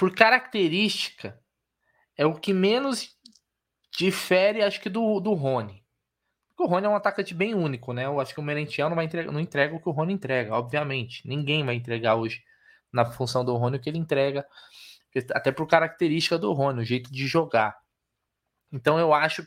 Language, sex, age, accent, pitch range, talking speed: Portuguese, male, 20-39, Brazilian, 135-180 Hz, 180 wpm